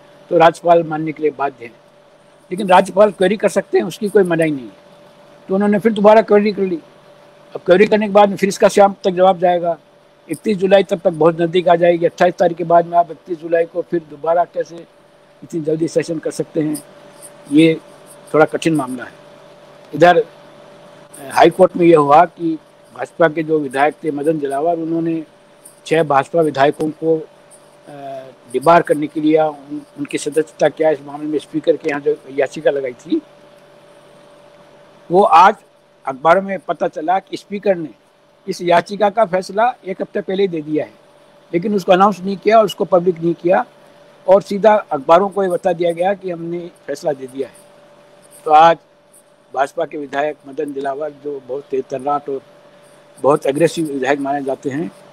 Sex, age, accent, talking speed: male, 60-79, native, 175 wpm